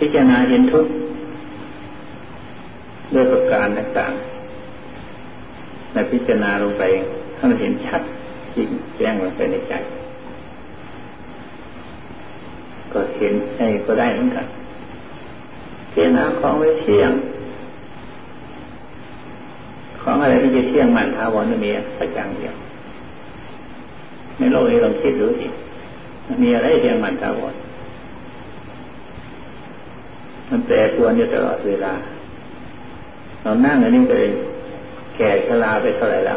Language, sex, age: Thai, male, 60-79